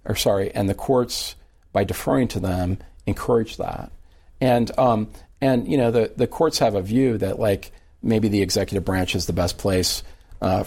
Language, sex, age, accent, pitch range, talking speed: English, male, 40-59, American, 85-105 Hz, 185 wpm